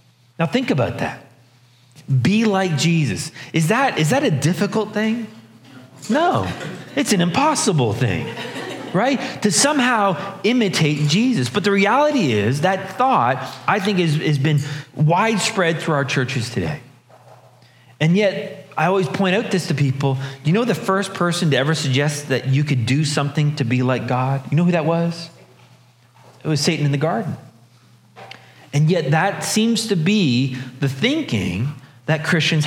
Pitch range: 130-185 Hz